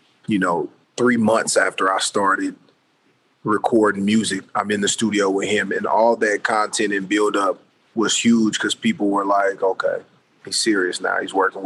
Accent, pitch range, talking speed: American, 95-115 Hz, 170 wpm